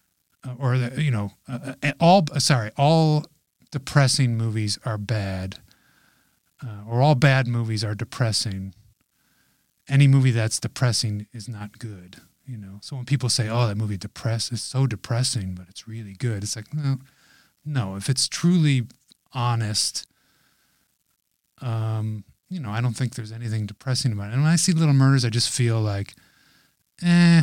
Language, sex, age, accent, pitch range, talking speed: English, male, 30-49, American, 115-145 Hz, 165 wpm